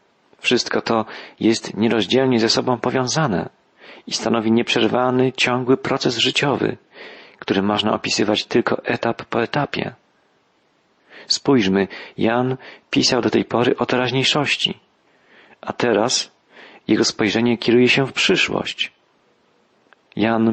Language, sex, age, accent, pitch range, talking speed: Polish, male, 40-59, native, 110-135 Hz, 110 wpm